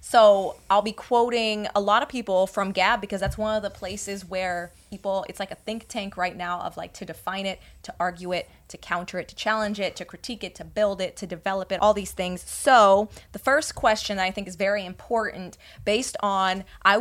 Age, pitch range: 20-39, 180-215 Hz